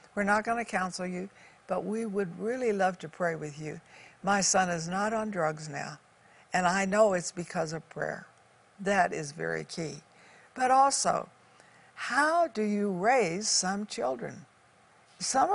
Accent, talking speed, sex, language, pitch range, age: American, 160 wpm, female, English, 185-255 Hz, 60-79